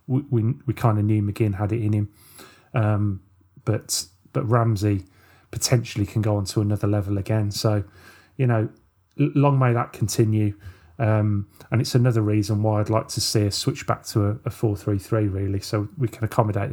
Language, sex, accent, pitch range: English, male, British, 105-125 Hz